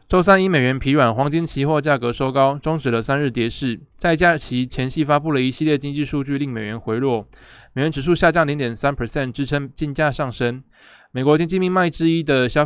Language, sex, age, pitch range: Chinese, male, 20-39, 125-150 Hz